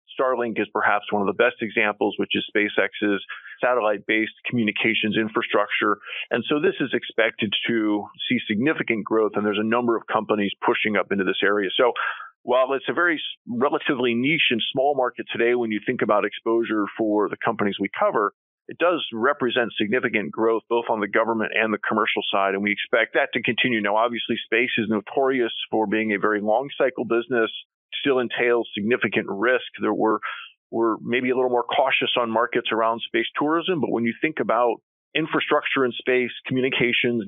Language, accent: English, American